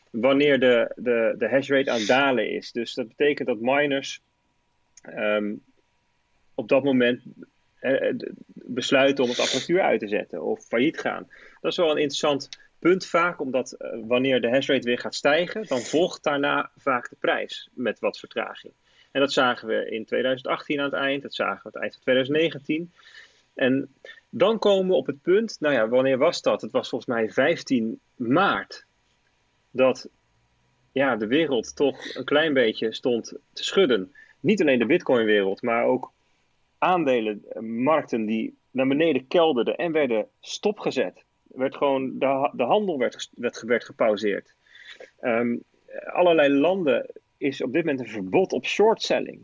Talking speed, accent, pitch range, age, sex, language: 160 wpm, Dutch, 125-155 Hz, 30-49, male, Dutch